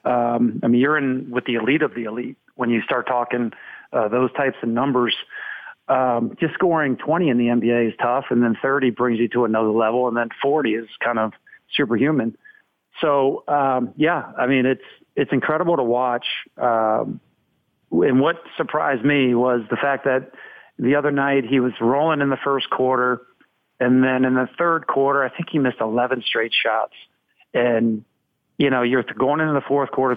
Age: 50-69